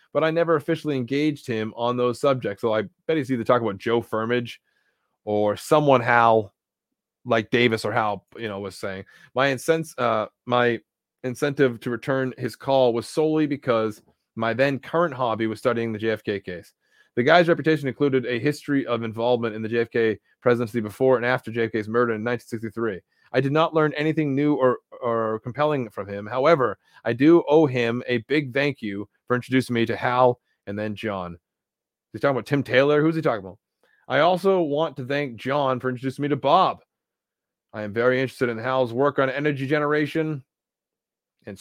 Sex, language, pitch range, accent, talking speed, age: male, English, 115-140 Hz, American, 185 wpm, 20-39